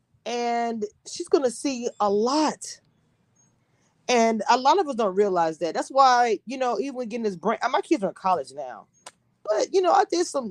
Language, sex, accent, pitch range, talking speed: English, female, American, 205-305 Hz, 195 wpm